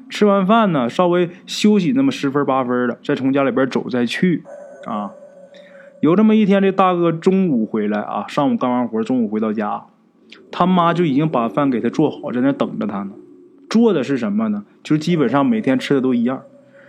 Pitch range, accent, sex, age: 145-240 Hz, native, male, 20-39